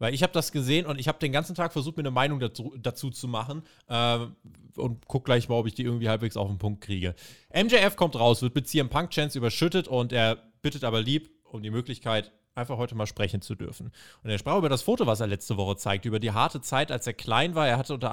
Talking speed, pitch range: 255 wpm, 115-150 Hz